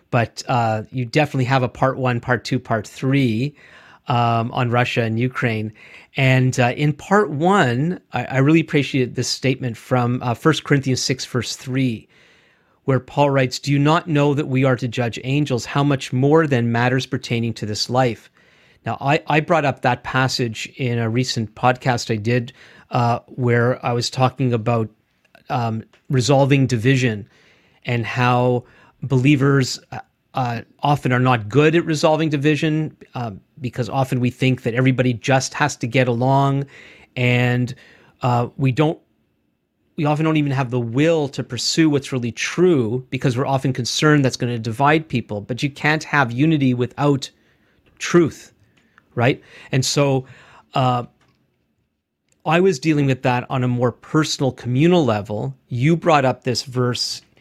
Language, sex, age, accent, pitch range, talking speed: English, male, 40-59, American, 120-145 Hz, 160 wpm